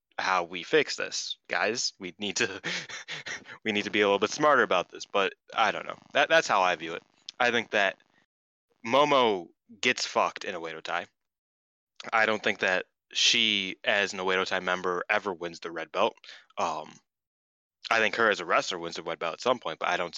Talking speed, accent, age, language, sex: 205 wpm, American, 20-39, English, male